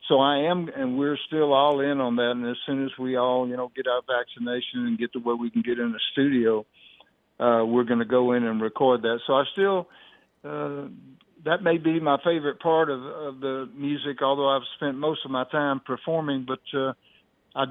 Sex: male